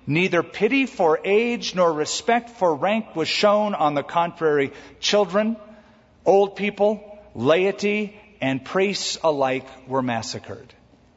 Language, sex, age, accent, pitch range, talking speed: English, male, 50-69, American, 130-195 Hz, 120 wpm